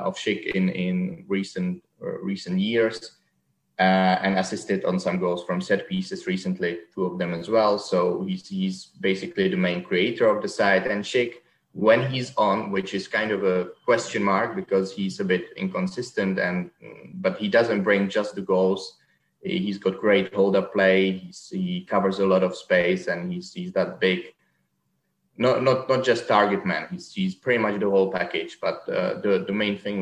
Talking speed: 190 wpm